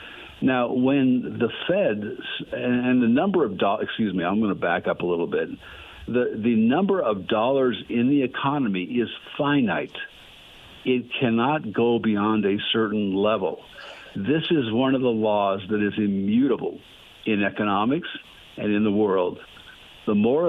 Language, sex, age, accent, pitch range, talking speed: English, male, 60-79, American, 100-120 Hz, 150 wpm